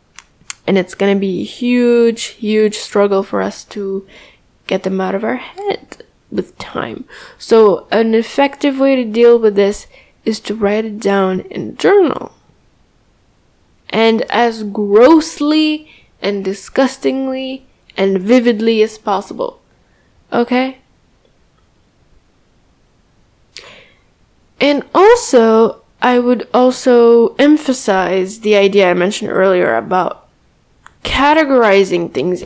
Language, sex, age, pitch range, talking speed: English, female, 10-29, 205-265 Hz, 110 wpm